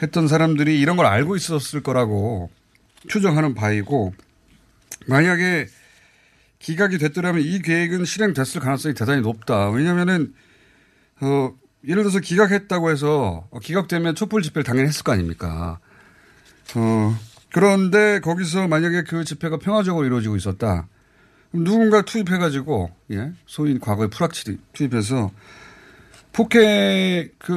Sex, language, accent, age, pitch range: male, Korean, native, 40-59, 110-175 Hz